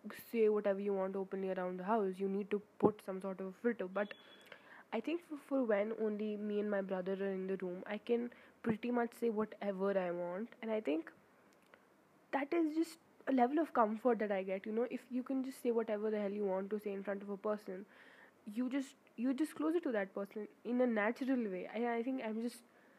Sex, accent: female, Indian